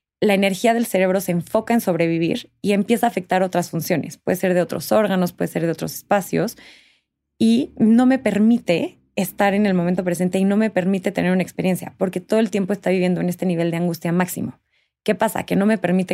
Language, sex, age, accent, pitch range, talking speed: Spanish, female, 20-39, Mexican, 175-205 Hz, 215 wpm